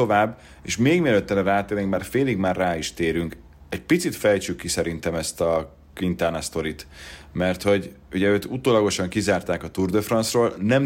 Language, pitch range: Hungarian, 80-95 Hz